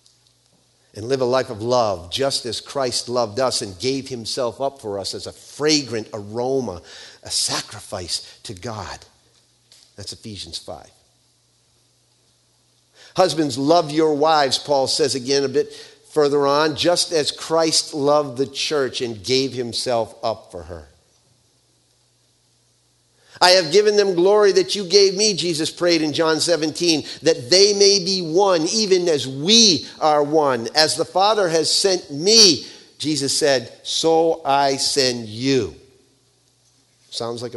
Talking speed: 140 wpm